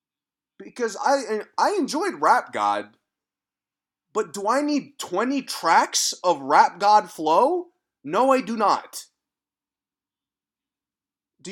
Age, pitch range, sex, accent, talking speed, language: 30-49, 195-275 Hz, male, American, 110 wpm, English